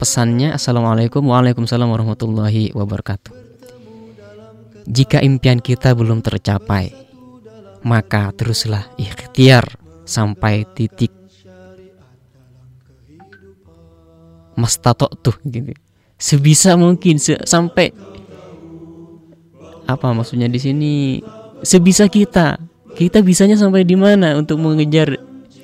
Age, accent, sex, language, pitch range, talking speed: 20-39, native, male, Indonesian, 115-160 Hz, 80 wpm